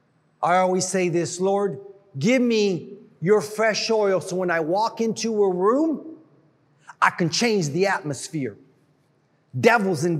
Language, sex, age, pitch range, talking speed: English, male, 40-59, 165-235 Hz, 140 wpm